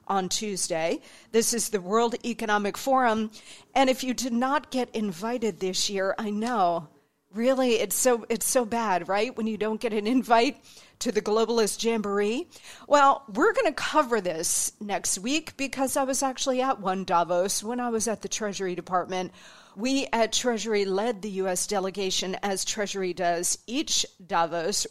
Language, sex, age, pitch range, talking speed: English, female, 40-59, 205-255 Hz, 170 wpm